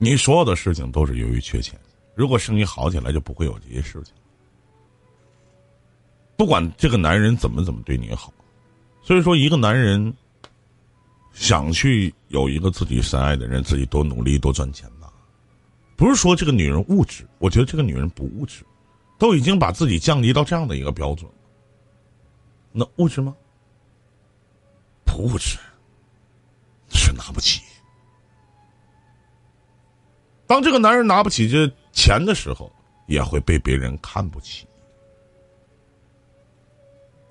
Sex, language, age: male, Chinese, 50-69